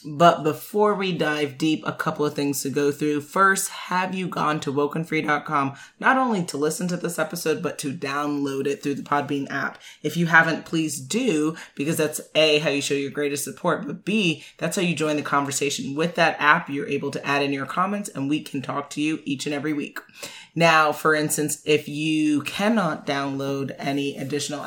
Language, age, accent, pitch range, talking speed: English, 30-49, American, 145-165 Hz, 205 wpm